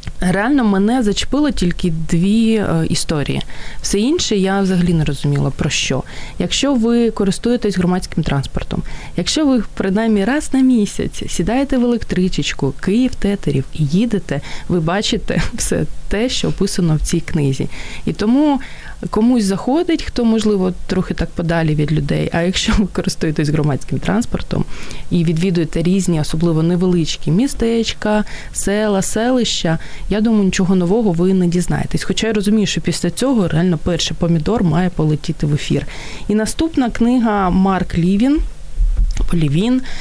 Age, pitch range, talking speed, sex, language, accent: 20-39, 170-215 Hz, 140 wpm, female, Ukrainian, native